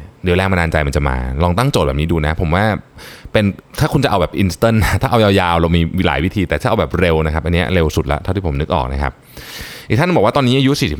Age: 20-39